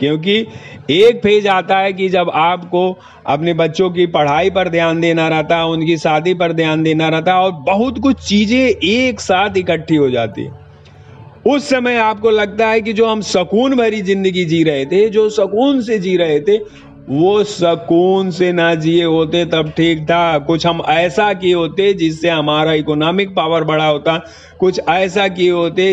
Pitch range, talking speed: 155-205 Hz, 175 wpm